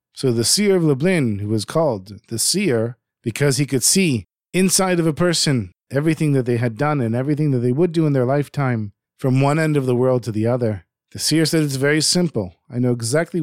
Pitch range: 120-170 Hz